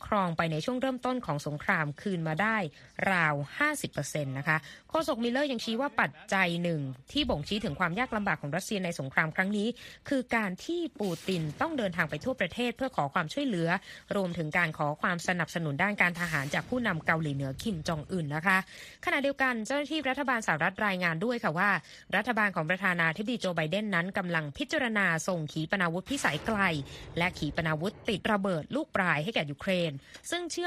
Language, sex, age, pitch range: Thai, female, 20-39, 160-215 Hz